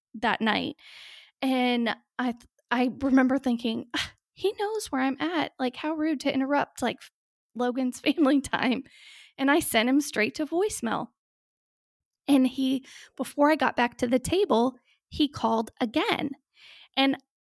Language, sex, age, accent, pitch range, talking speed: English, female, 10-29, American, 235-280 Hz, 145 wpm